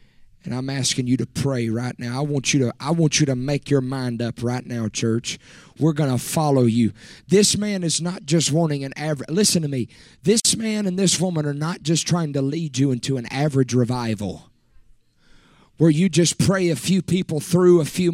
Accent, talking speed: American, 215 wpm